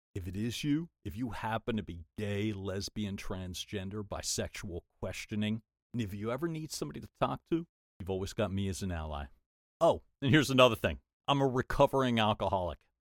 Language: English